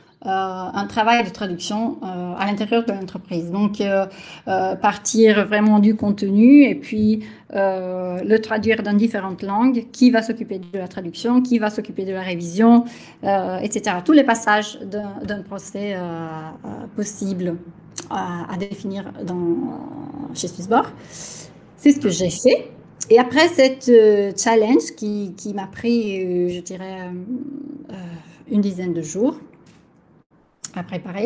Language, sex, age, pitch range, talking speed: French, female, 30-49, 185-230 Hz, 145 wpm